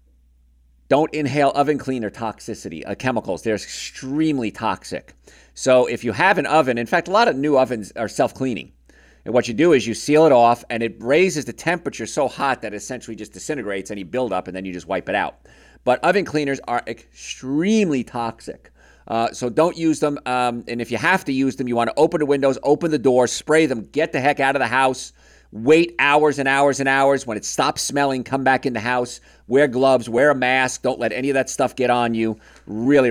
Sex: male